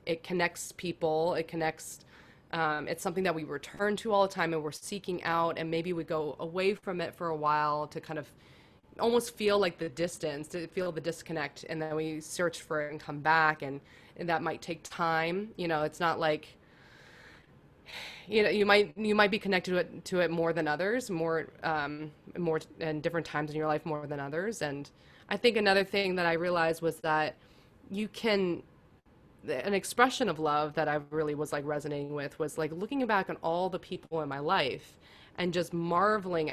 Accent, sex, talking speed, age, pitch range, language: American, female, 205 wpm, 20-39, 160-205 Hz, English